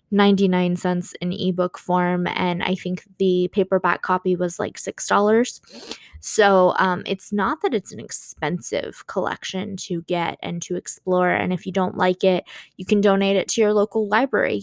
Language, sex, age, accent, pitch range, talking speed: English, female, 20-39, American, 185-215 Hz, 175 wpm